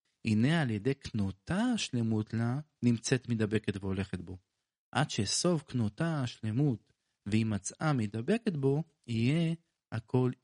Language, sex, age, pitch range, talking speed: Hebrew, male, 40-59, 110-140 Hz, 110 wpm